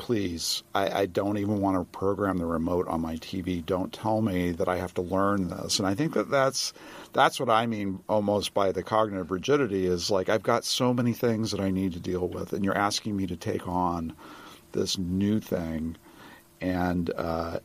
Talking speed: 205 wpm